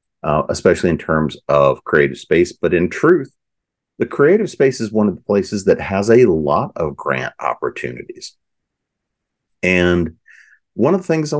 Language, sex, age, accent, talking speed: English, male, 50-69, American, 165 wpm